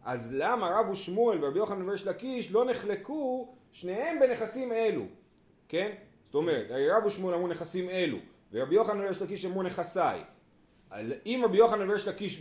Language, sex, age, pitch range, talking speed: Hebrew, male, 30-49, 155-215 Hz, 140 wpm